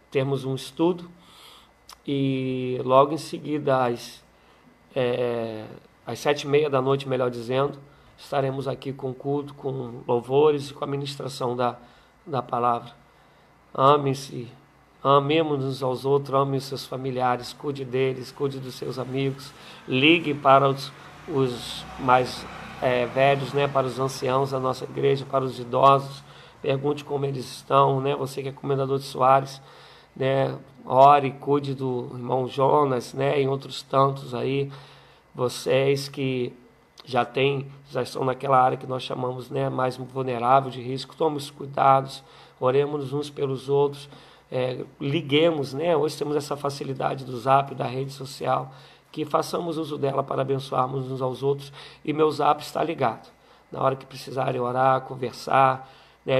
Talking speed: 150 wpm